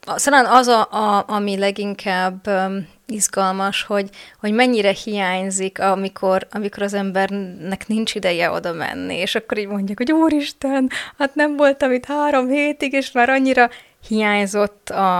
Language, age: Hungarian, 20-39